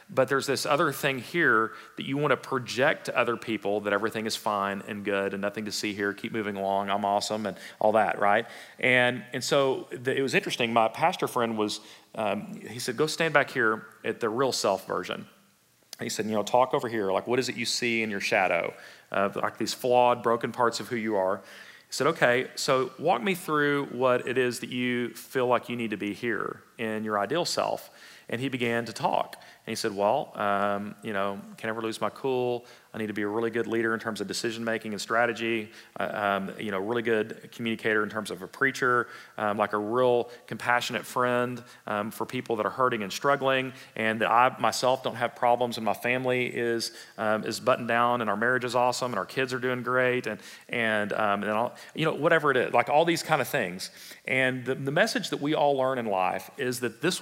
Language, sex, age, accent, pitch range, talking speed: English, male, 40-59, American, 110-125 Hz, 230 wpm